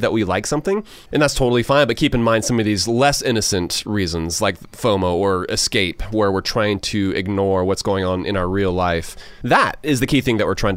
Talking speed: 235 wpm